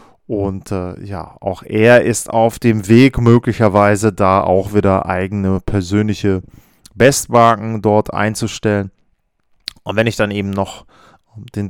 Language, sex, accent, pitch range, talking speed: German, male, German, 105-125 Hz, 130 wpm